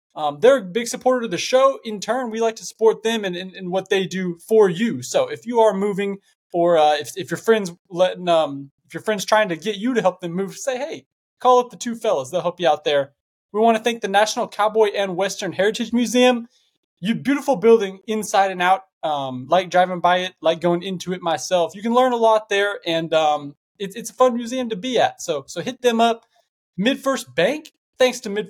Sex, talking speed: male, 230 wpm